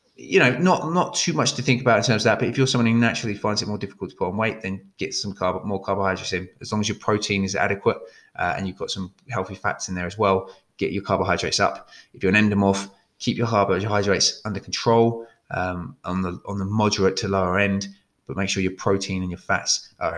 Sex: male